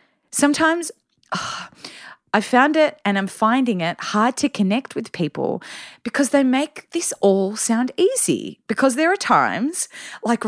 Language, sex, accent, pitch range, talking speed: English, female, Australian, 195-270 Hz, 145 wpm